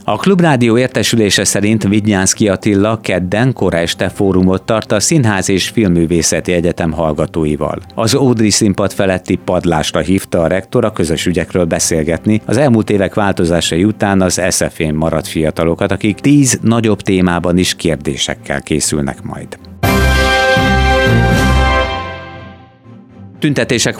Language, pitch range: Hungarian, 85-110 Hz